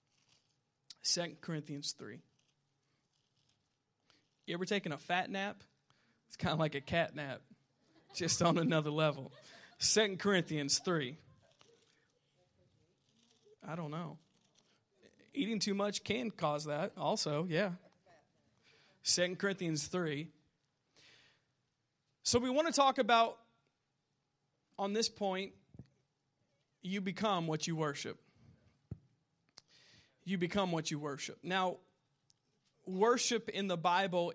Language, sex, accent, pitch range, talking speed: English, male, American, 140-185 Hz, 105 wpm